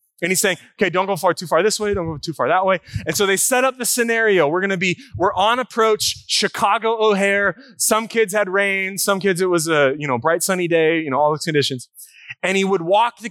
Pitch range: 125-195 Hz